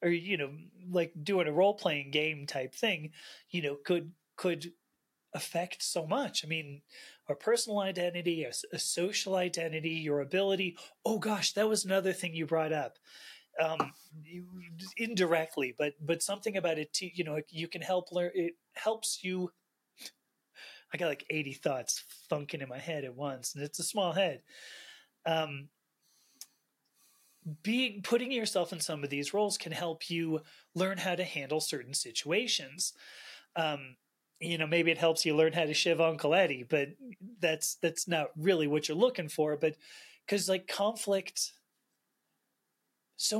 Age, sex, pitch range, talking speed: 30-49, male, 155-185 Hz, 160 wpm